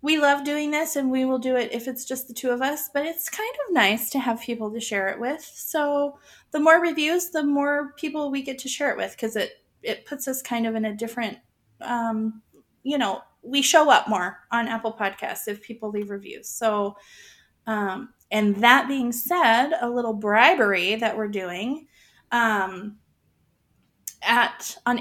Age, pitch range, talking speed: 20-39, 225-275 Hz, 190 wpm